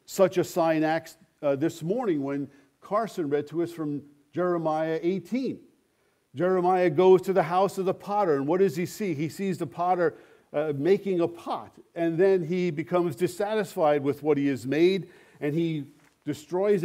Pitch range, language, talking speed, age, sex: 150-185 Hz, English, 175 wpm, 50-69, male